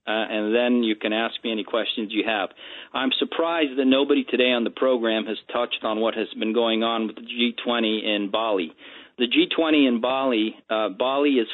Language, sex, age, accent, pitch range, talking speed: English, male, 40-59, American, 120-145 Hz, 205 wpm